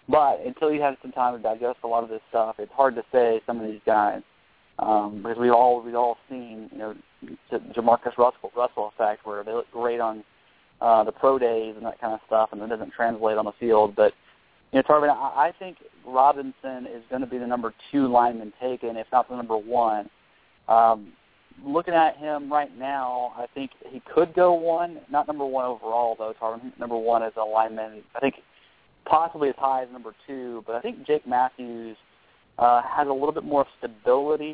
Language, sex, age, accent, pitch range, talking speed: English, male, 30-49, American, 110-130 Hz, 210 wpm